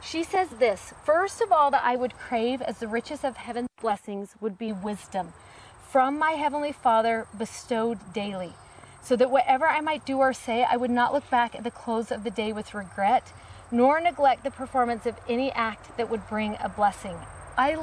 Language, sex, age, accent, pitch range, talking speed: English, female, 30-49, American, 220-280 Hz, 200 wpm